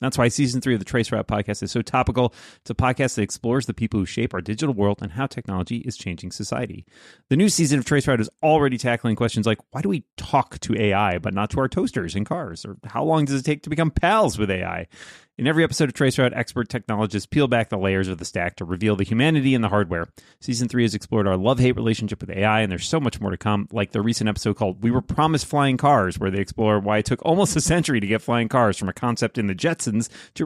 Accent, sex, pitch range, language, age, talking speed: American, male, 105-135 Hz, English, 30-49, 260 wpm